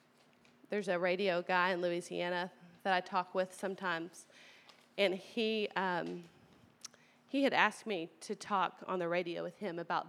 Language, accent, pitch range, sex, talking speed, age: English, American, 180-200 Hz, female, 155 wpm, 30-49